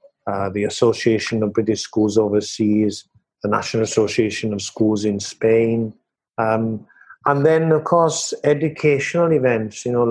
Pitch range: 110-140 Hz